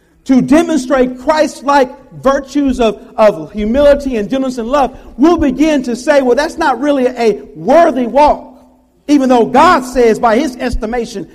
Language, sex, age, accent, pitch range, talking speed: English, male, 50-69, American, 240-310 Hz, 155 wpm